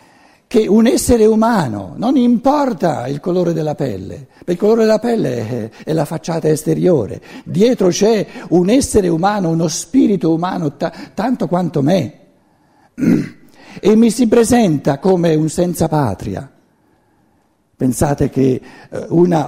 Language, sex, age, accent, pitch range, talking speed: Italian, male, 60-79, native, 160-225 Hz, 125 wpm